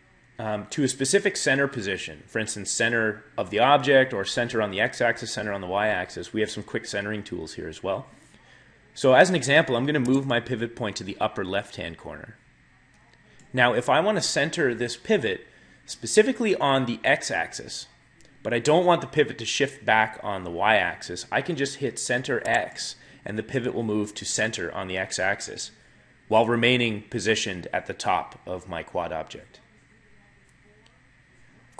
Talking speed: 180 wpm